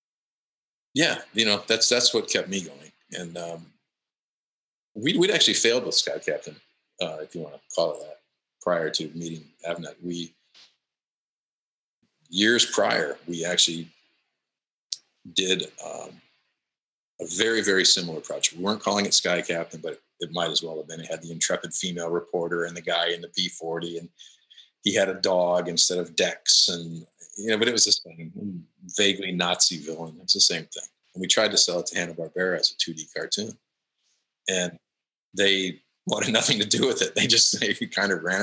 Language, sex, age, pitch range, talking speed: English, male, 50-69, 85-105 Hz, 180 wpm